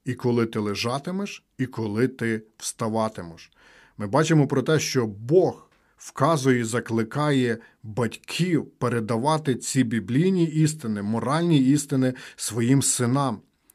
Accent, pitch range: native, 115-145 Hz